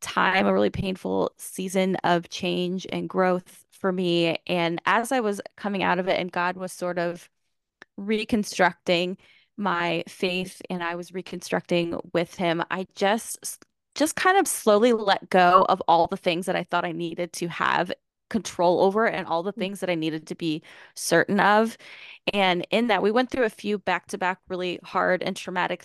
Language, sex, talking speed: English, female, 185 wpm